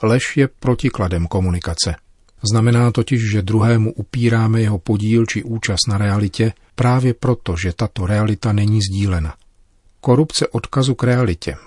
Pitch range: 95-120 Hz